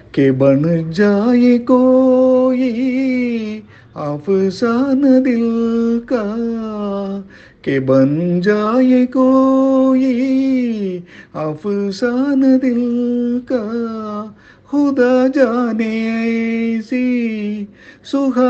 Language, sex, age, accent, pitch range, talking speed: Tamil, male, 50-69, native, 140-230 Hz, 50 wpm